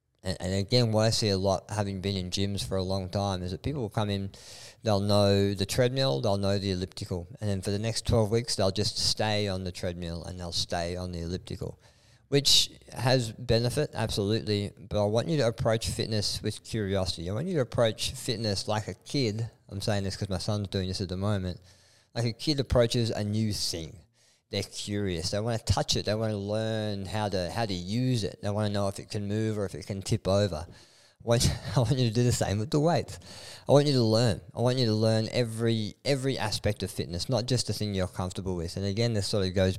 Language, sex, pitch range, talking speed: English, male, 95-115 Hz, 235 wpm